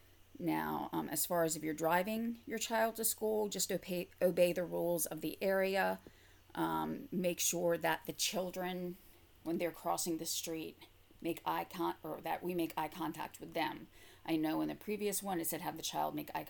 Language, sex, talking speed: English, female, 200 wpm